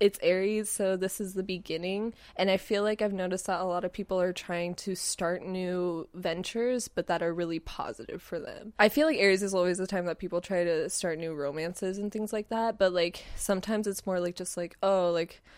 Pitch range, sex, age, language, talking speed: 175-200 Hz, female, 20-39, English, 230 wpm